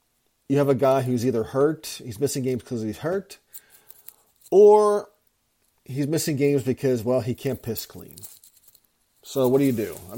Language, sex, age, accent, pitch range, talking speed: English, male, 40-59, American, 115-140 Hz, 170 wpm